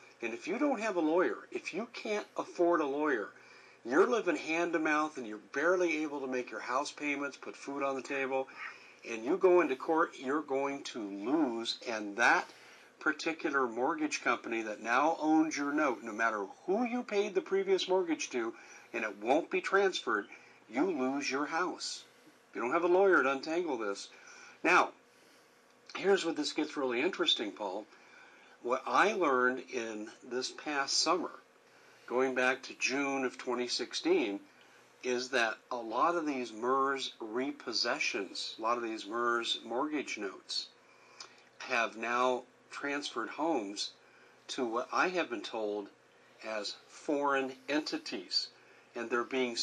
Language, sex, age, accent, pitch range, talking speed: English, male, 50-69, American, 125-215 Hz, 155 wpm